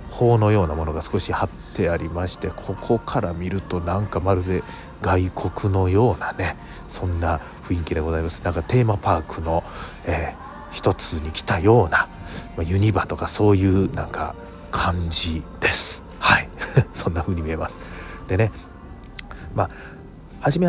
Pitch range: 85-100 Hz